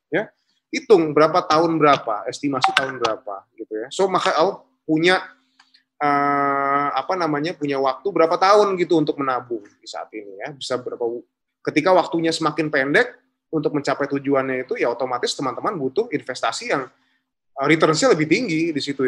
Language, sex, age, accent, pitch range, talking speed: Indonesian, male, 20-39, native, 135-175 Hz, 155 wpm